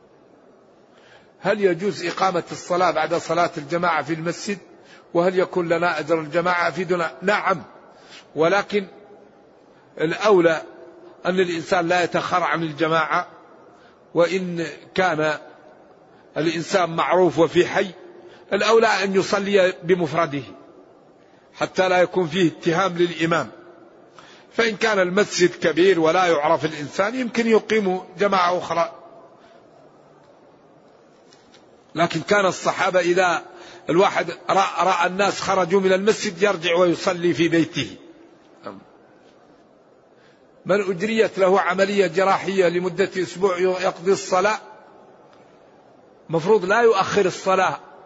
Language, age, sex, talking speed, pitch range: Arabic, 50-69, male, 95 wpm, 170-200 Hz